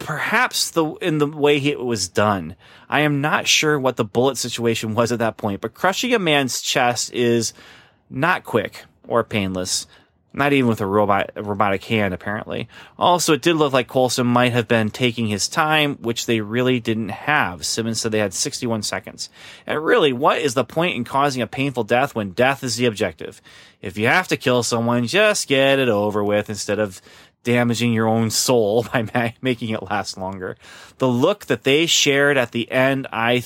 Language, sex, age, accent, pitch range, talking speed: English, male, 30-49, American, 105-130 Hz, 195 wpm